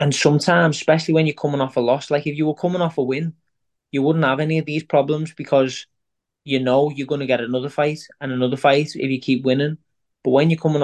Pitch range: 125-140 Hz